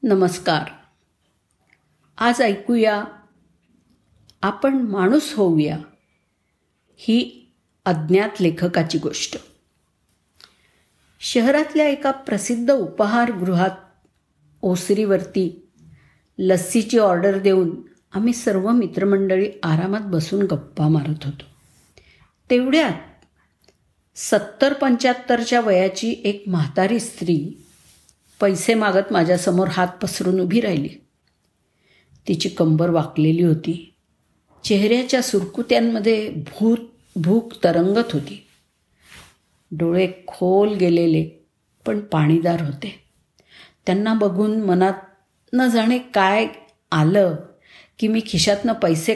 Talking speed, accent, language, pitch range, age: 70 wpm, native, Marathi, 165-220 Hz, 50-69